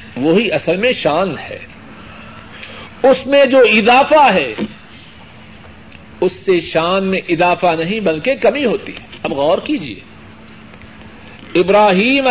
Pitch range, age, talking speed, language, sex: 170-235 Hz, 50-69, 115 wpm, Urdu, male